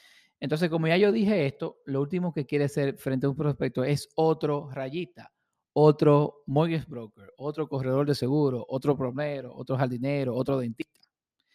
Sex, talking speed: male, 160 wpm